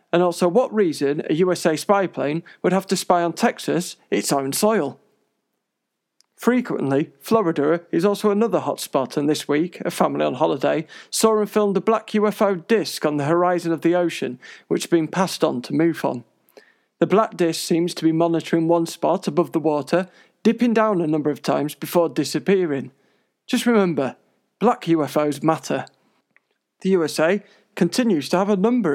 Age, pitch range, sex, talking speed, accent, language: 40-59, 155-200 Hz, male, 170 wpm, British, English